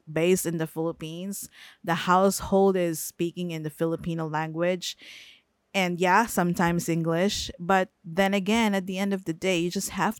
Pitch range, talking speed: 165-200 Hz, 165 wpm